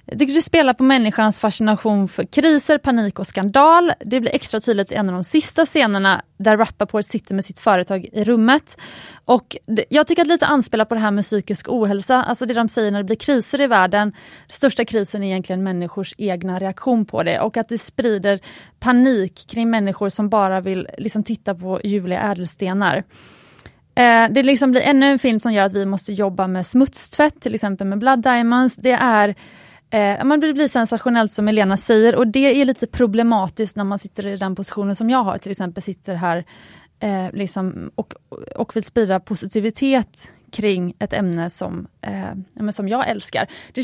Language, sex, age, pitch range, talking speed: Swedish, female, 30-49, 195-250 Hz, 190 wpm